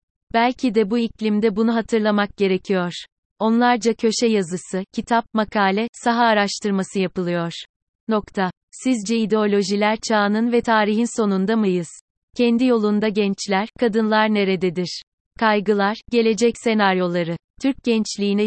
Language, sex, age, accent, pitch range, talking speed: Turkish, female, 30-49, native, 195-225 Hz, 105 wpm